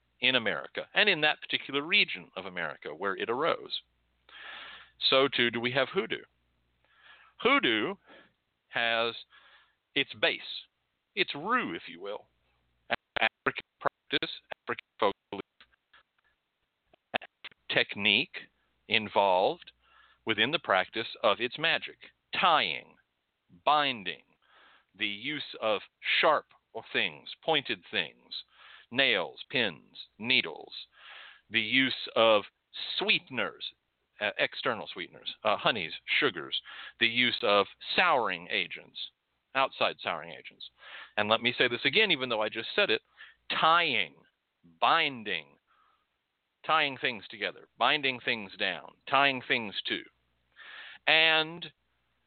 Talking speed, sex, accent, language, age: 110 wpm, male, American, English, 50-69